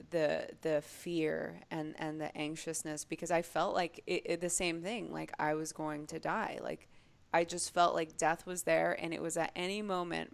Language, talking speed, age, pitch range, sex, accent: English, 210 wpm, 20-39, 160-195 Hz, female, American